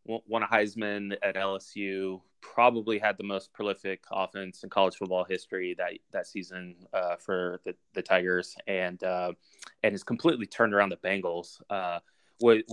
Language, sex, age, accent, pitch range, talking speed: English, male, 20-39, American, 90-105 Hz, 160 wpm